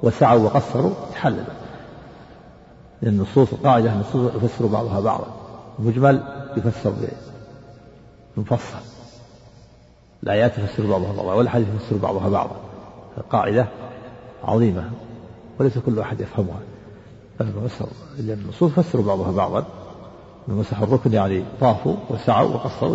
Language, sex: Arabic, male